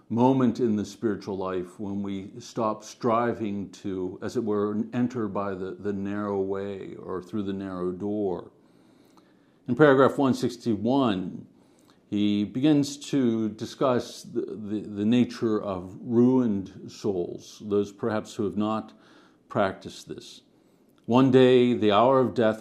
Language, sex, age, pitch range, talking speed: English, male, 50-69, 105-125 Hz, 135 wpm